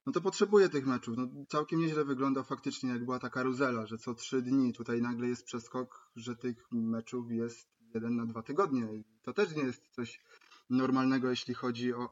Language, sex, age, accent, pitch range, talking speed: Polish, male, 20-39, native, 120-145 Hz, 200 wpm